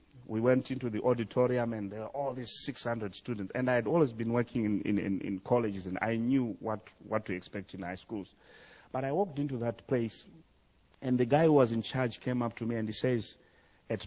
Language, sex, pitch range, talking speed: English, male, 115-170 Hz, 230 wpm